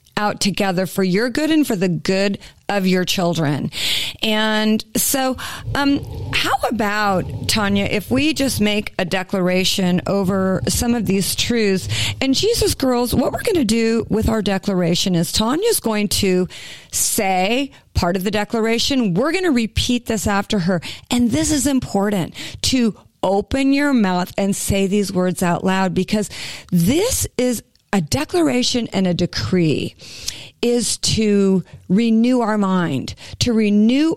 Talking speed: 150 wpm